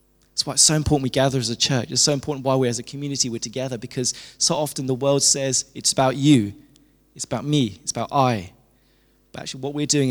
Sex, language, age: male, English, 20-39